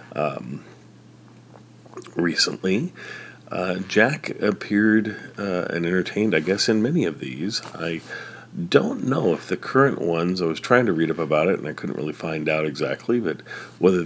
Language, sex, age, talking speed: English, male, 40-59, 160 wpm